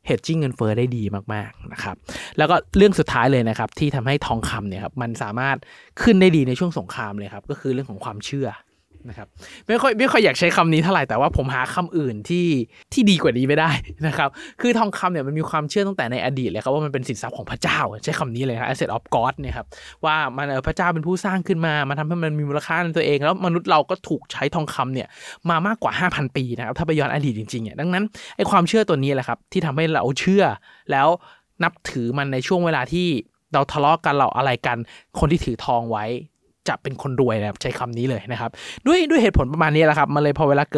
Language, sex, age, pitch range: Thai, male, 20-39, 120-160 Hz